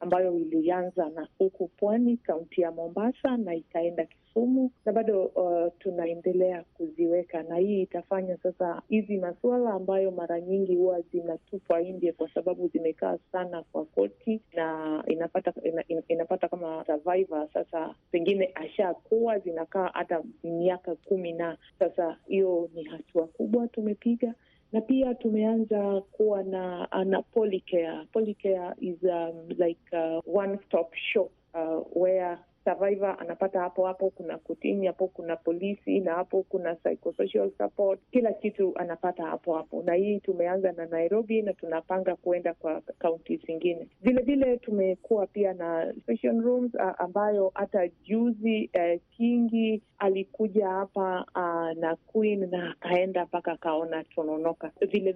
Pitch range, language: 170-200 Hz, Swahili